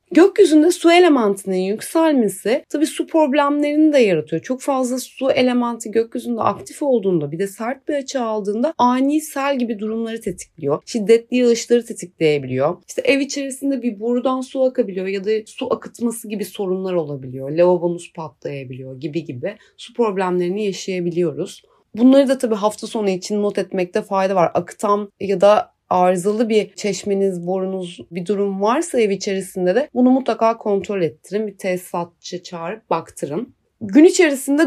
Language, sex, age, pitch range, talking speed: Turkish, female, 30-49, 190-260 Hz, 145 wpm